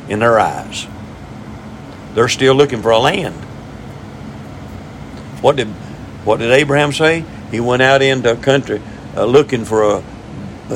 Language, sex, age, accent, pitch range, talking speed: English, male, 50-69, American, 115-145 Hz, 140 wpm